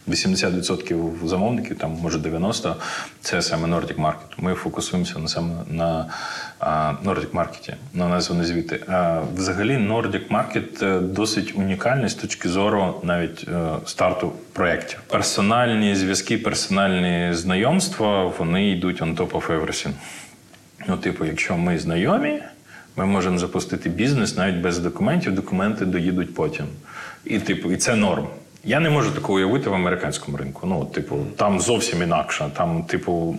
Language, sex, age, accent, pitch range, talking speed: Ukrainian, male, 30-49, native, 85-105 Hz, 135 wpm